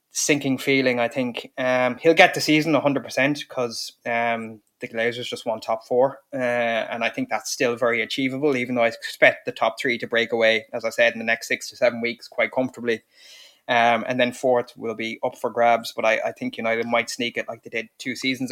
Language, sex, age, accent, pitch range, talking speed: English, male, 20-39, Irish, 120-145 Hz, 225 wpm